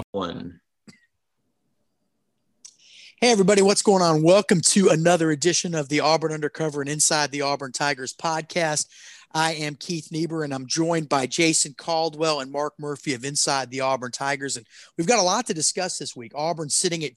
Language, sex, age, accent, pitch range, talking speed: English, male, 30-49, American, 140-165 Hz, 170 wpm